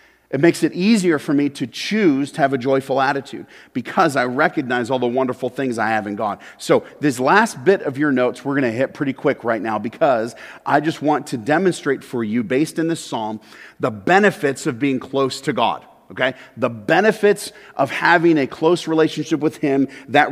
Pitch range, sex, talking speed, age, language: 135-170 Hz, male, 205 wpm, 40-59, English